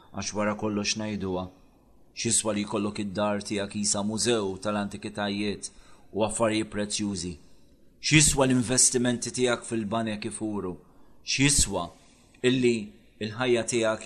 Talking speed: 105 wpm